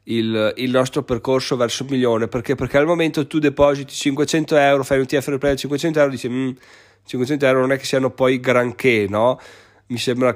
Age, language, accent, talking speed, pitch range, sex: 20-39, Italian, native, 195 wpm, 125-160 Hz, male